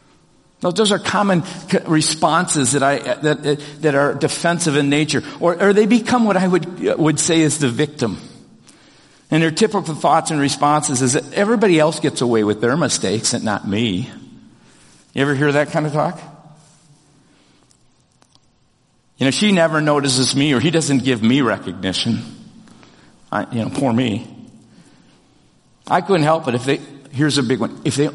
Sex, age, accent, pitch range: male, 50-69, American, 120-155 Hz